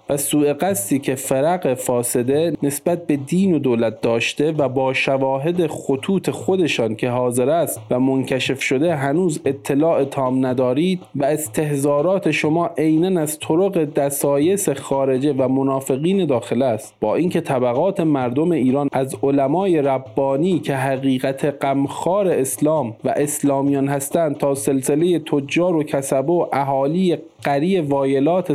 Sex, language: male, Persian